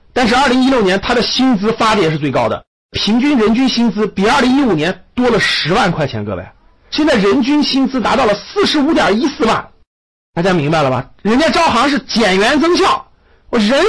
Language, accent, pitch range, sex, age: Chinese, native, 160-255 Hz, male, 50-69